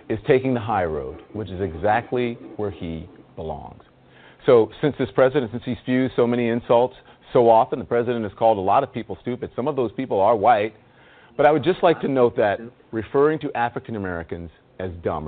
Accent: American